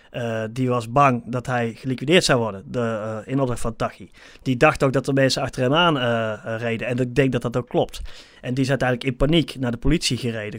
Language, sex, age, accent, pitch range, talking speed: Dutch, male, 30-49, Dutch, 120-140 Hz, 245 wpm